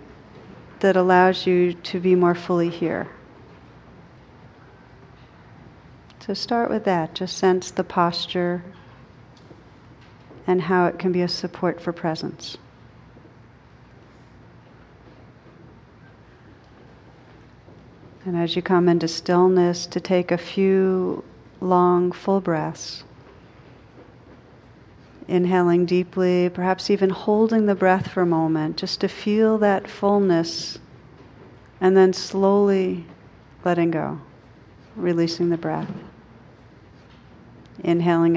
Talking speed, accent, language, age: 95 wpm, American, English, 50-69